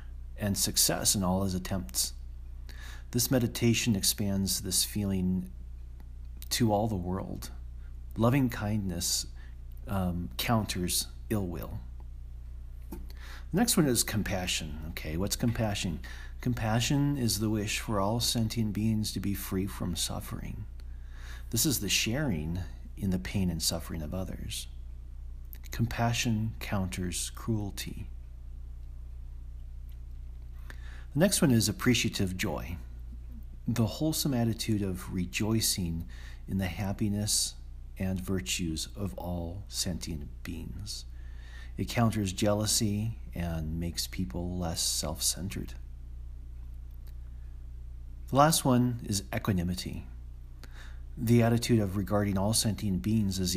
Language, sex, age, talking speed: English, male, 40-59, 110 wpm